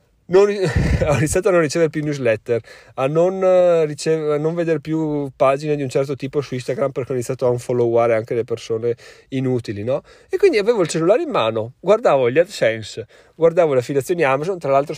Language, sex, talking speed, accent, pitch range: Italian, male, 190 wpm, native, 125-175 Hz